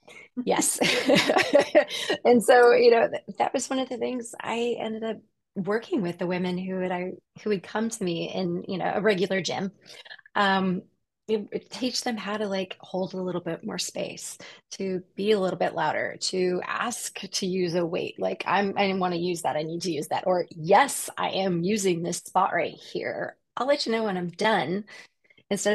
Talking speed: 195 wpm